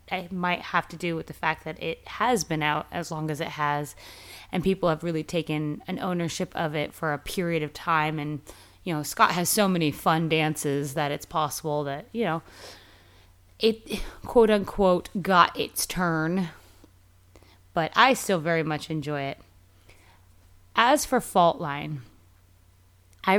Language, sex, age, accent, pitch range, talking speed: English, female, 20-39, American, 135-180 Hz, 165 wpm